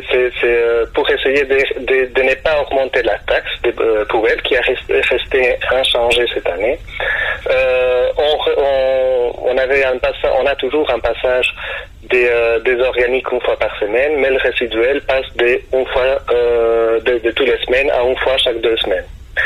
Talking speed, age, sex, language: 190 wpm, 30-49, male, French